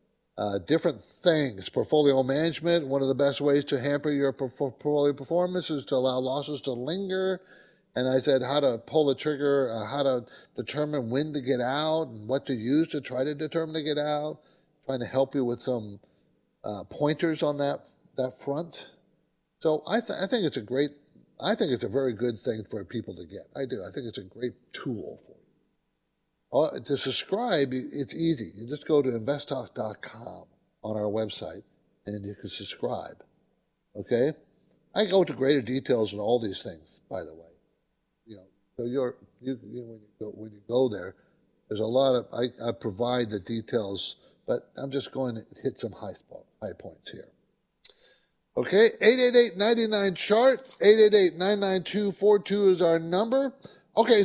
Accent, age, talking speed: American, 50-69, 185 wpm